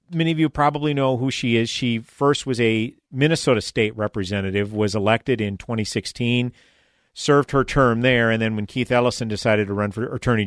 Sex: male